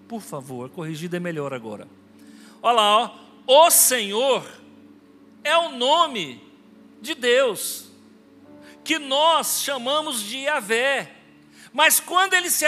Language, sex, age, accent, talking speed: Portuguese, male, 60-79, Brazilian, 115 wpm